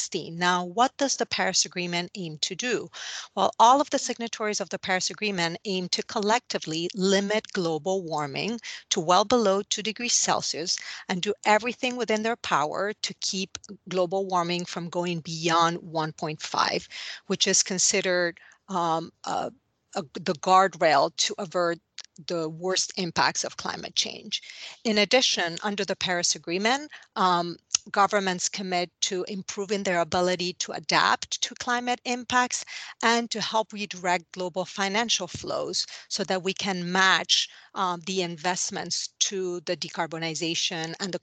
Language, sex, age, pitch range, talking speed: English, female, 40-59, 175-215 Hz, 140 wpm